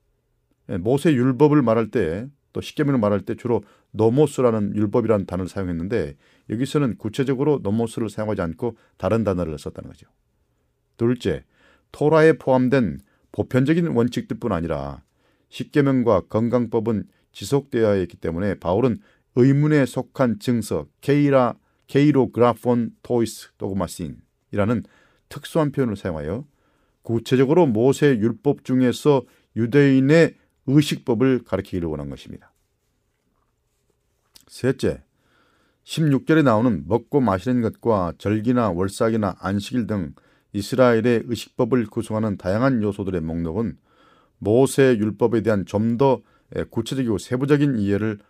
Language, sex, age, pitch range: Korean, male, 40-59, 100-130 Hz